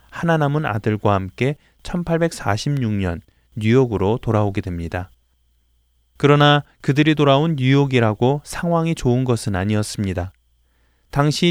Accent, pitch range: native, 95-140 Hz